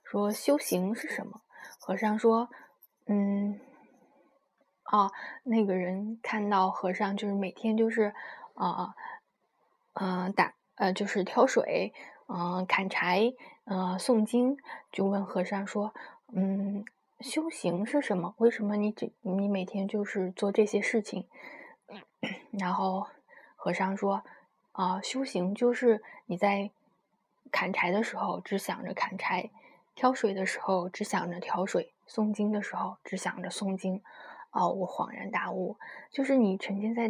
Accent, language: native, Chinese